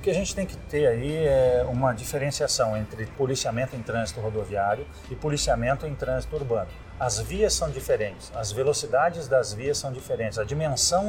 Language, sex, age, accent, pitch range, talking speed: Portuguese, male, 40-59, Brazilian, 130-185 Hz, 180 wpm